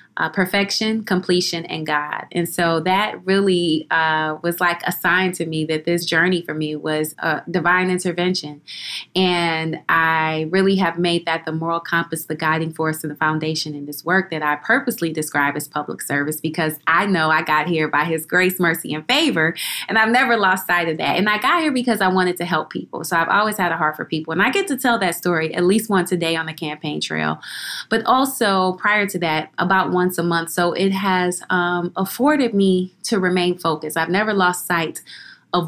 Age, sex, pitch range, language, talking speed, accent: 20-39, female, 160-185 Hz, English, 215 wpm, American